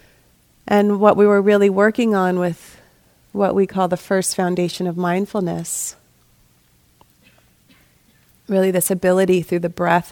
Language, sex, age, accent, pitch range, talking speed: English, female, 30-49, American, 160-190 Hz, 130 wpm